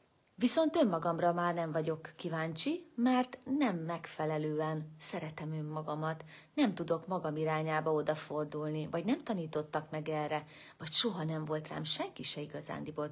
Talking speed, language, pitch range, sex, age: 135 wpm, Hungarian, 155-185 Hz, female, 30-49